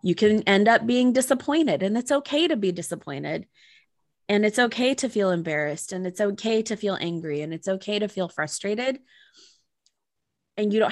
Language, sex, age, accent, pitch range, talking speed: English, female, 20-39, American, 185-225 Hz, 180 wpm